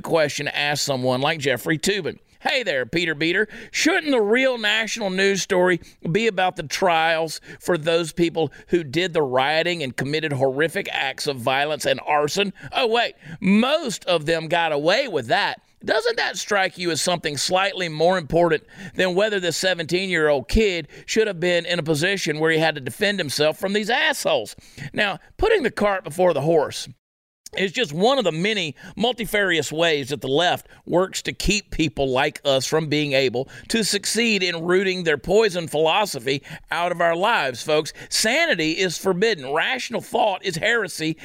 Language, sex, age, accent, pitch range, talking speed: English, male, 40-59, American, 160-205 Hz, 175 wpm